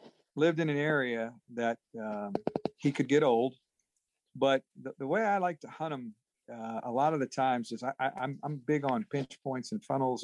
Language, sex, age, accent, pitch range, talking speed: English, male, 50-69, American, 120-150 Hz, 215 wpm